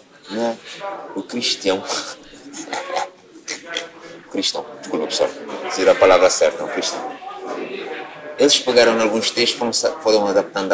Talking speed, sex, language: 110 wpm, male, Portuguese